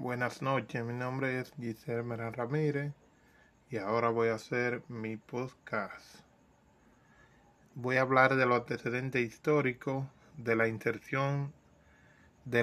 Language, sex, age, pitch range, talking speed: Spanish, male, 20-39, 115-135 Hz, 125 wpm